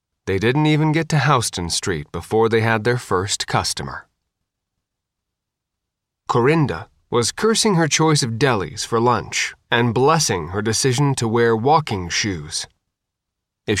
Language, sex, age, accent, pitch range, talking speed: English, male, 30-49, American, 100-140 Hz, 135 wpm